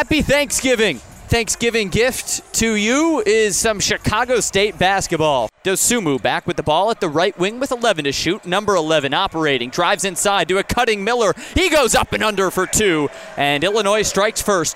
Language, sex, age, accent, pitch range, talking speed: English, male, 20-39, American, 170-225 Hz, 180 wpm